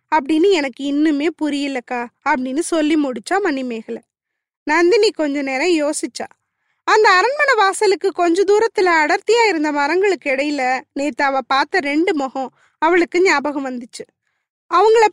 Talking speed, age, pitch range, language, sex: 115 wpm, 20-39, 285-385 Hz, Tamil, female